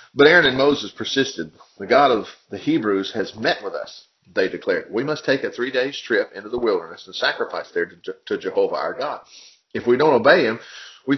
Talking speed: 205 wpm